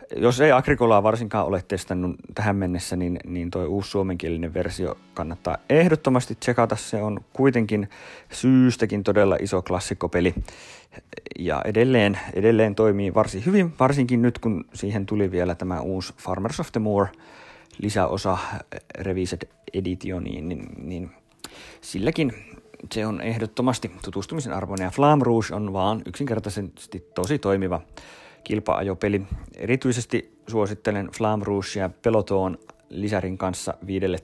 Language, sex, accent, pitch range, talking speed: Finnish, male, native, 95-120 Hz, 125 wpm